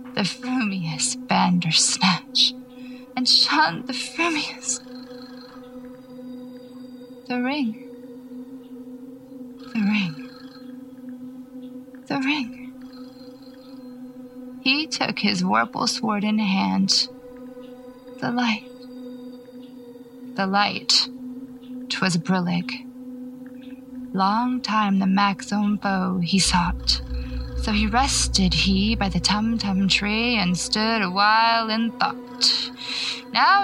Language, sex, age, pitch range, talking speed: English, female, 20-39, 205-255 Hz, 85 wpm